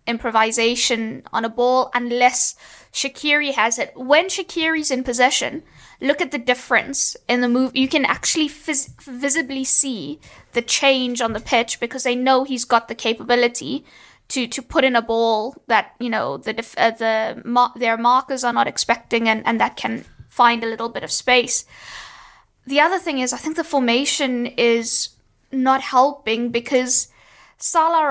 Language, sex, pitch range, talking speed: English, female, 235-275 Hz, 170 wpm